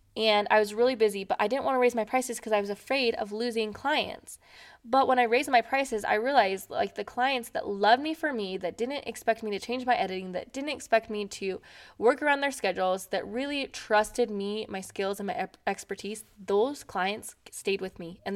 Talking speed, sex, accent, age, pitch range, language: 220 wpm, female, American, 20-39, 195-245 Hz, English